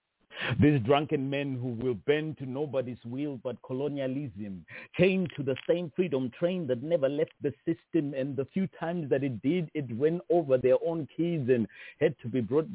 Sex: male